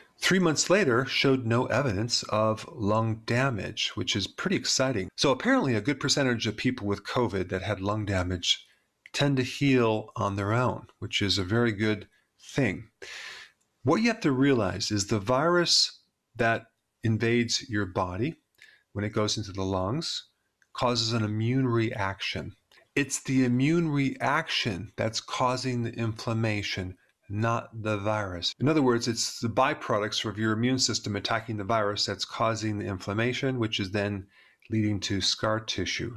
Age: 40-59